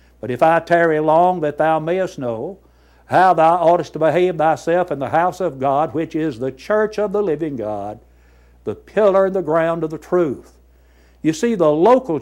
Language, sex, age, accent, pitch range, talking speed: English, male, 60-79, American, 115-170 Hz, 195 wpm